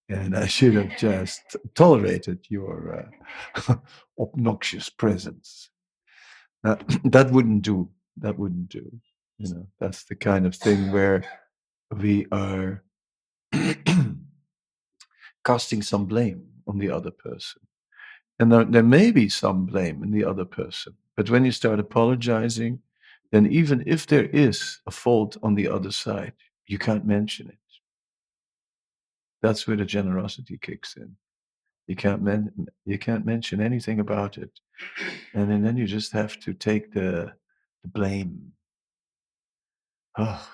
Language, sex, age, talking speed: English, male, 50-69, 135 wpm